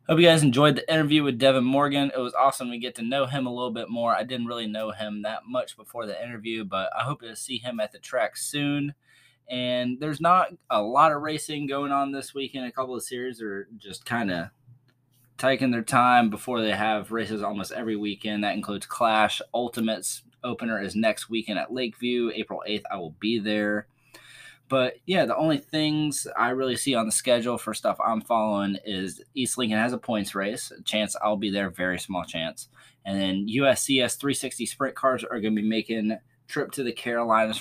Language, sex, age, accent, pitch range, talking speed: English, male, 20-39, American, 105-130 Hz, 205 wpm